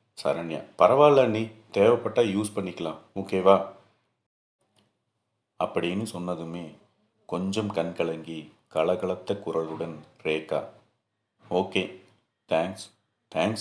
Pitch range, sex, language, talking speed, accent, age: 80-100 Hz, male, Tamil, 75 wpm, native, 40-59